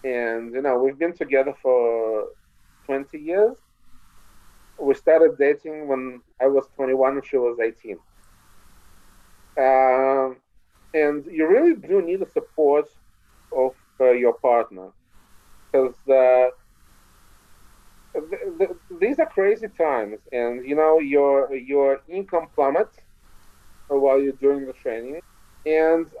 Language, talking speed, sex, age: English, 120 wpm, male, 40-59